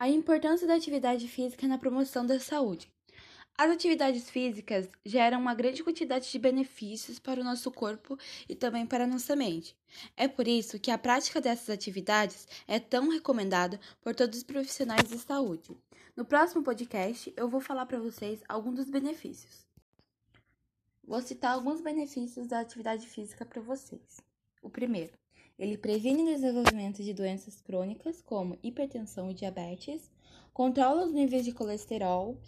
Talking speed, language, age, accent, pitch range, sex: 155 wpm, Portuguese, 10-29, Brazilian, 215-265 Hz, female